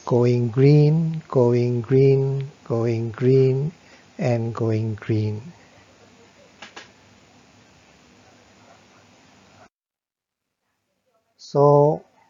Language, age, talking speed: Indonesian, 50-69, 50 wpm